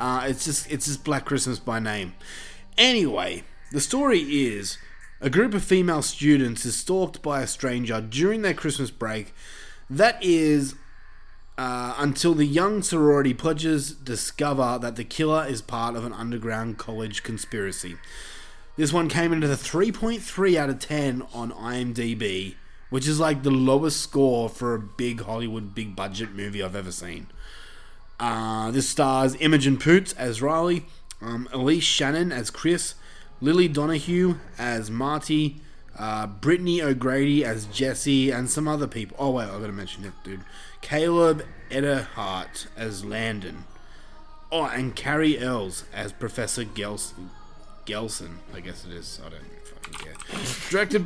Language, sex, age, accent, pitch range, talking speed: English, male, 20-39, Australian, 110-155 Hz, 150 wpm